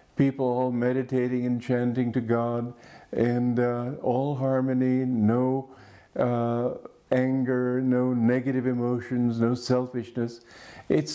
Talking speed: 110 wpm